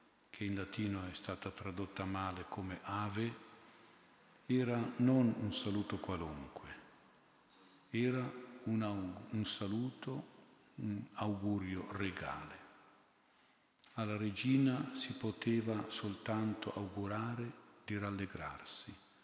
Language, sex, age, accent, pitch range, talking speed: Italian, male, 50-69, native, 95-115 Hz, 85 wpm